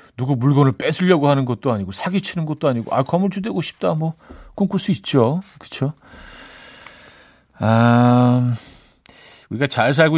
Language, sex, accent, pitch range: Korean, male, native, 120-165 Hz